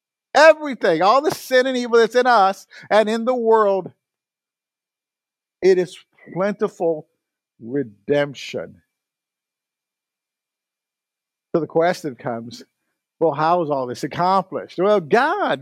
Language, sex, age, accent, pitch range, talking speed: English, male, 50-69, American, 145-215 Hz, 110 wpm